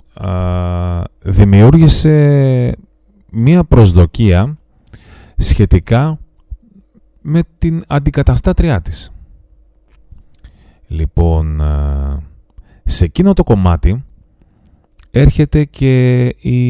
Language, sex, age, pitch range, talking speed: Greek, male, 30-49, 80-120 Hz, 60 wpm